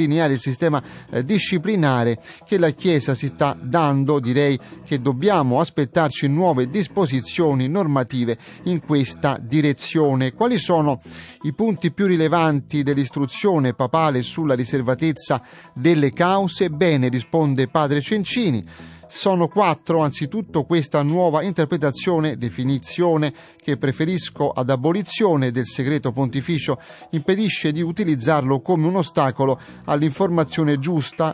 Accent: native